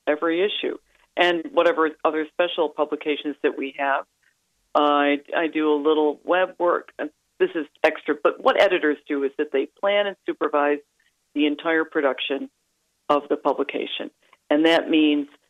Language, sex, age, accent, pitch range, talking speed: English, female, 50-69, American, 145-170 Hz, 155 wpm